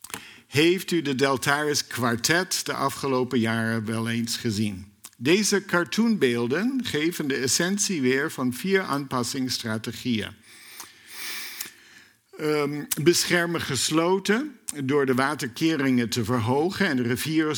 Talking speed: 100 wpm